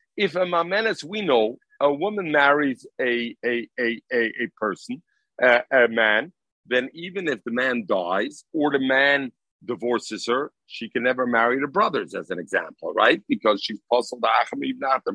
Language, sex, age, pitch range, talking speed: English, male, 50-69, 135-225 Hz, 175 wpm